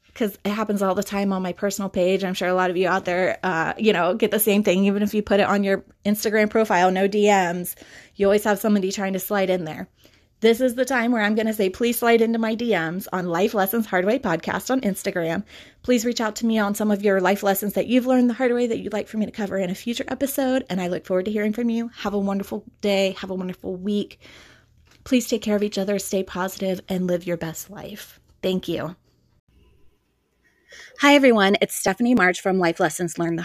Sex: female